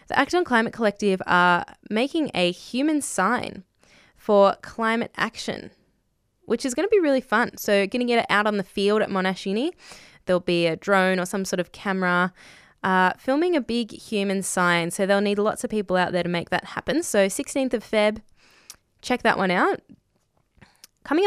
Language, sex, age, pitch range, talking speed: English, female, 10-29, 180-225 Hz, 190 wpm